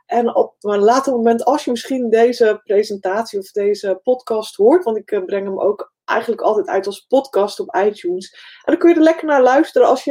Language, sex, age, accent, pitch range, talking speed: Dutch, female, 20-39, Dutch, 195-260 Hz, 215 wpm